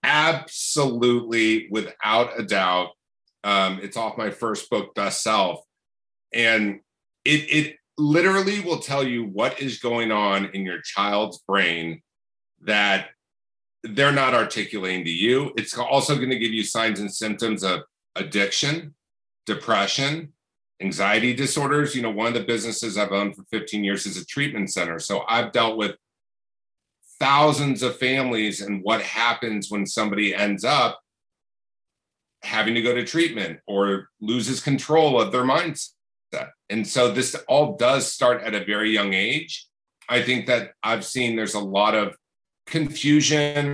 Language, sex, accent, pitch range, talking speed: English, male, American, 100-135 Hz, 150 wpm